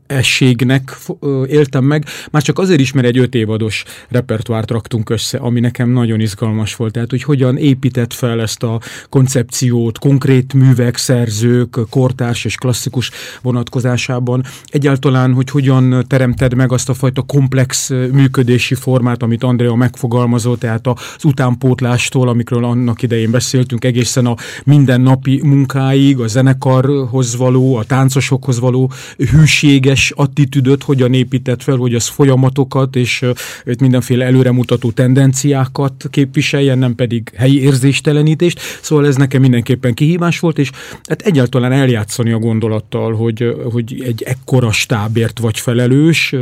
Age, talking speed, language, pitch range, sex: 30-49, 130 wpm, English, 120-140 Hz, male